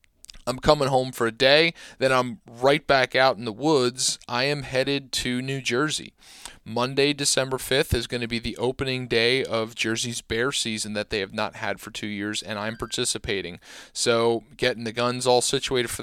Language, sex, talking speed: English, male, 195 wpm